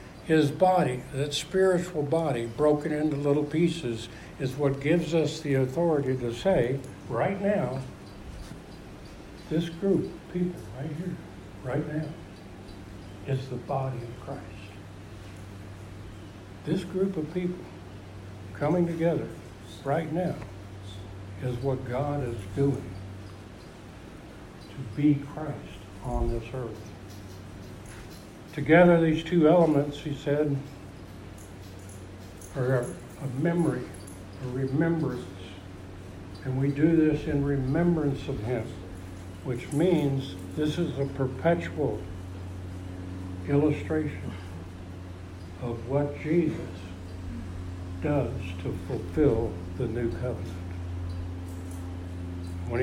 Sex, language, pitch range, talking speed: male, English, 95-145 Hz, 100 wpm